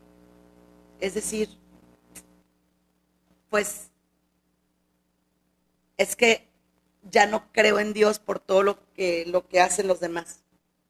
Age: 40-59